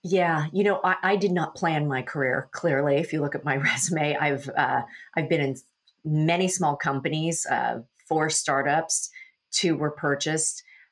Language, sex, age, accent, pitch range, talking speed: English, female, 40-59, American, 135-165 Hz, 170 wpm